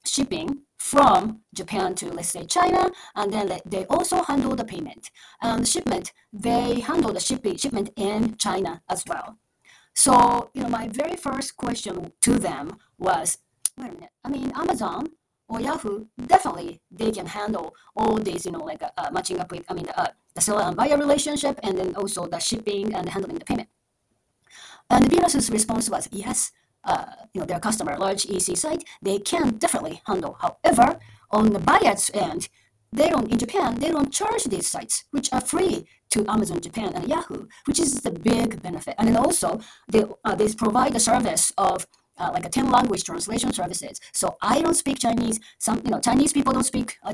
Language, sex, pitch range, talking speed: English, female, 205-280 Hz, 190 wpm